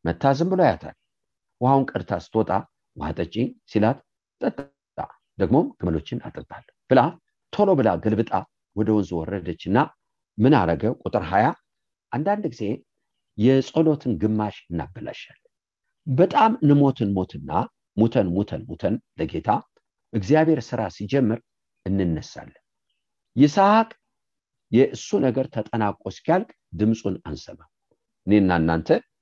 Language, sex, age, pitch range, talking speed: English, male, 50-69, 95-150 Hz, 60 wpm